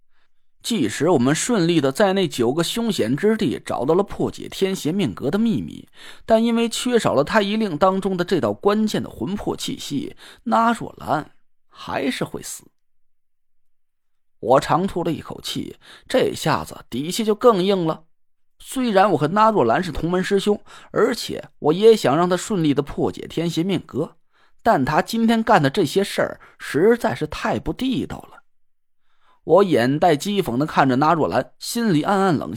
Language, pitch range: Chinese, 175-230 Hz